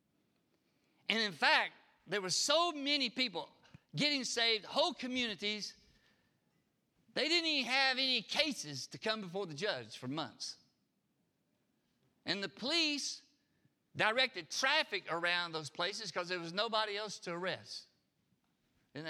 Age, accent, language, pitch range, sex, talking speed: 50-69, American, English, 160-235 Hz, male, 130 wpm